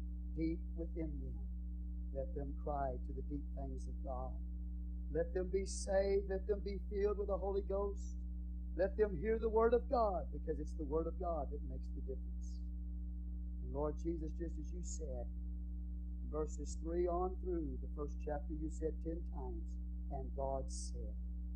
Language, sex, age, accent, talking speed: English, male, 50-69, American, 175 wpm